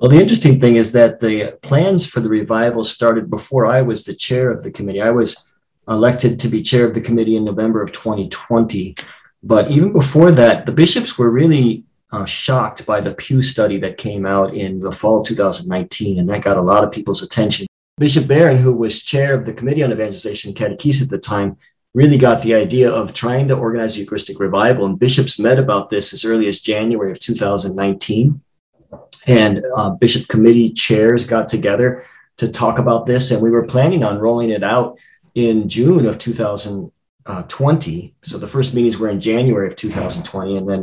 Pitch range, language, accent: 105-125 Hz, English, American